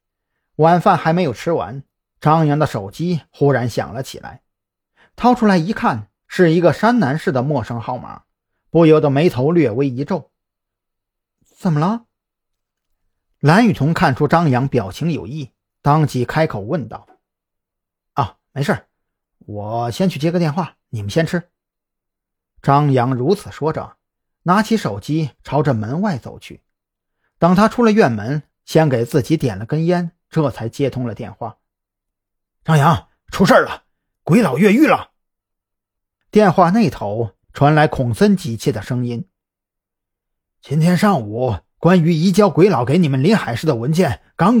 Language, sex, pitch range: Chinese, male, 115-175 Hz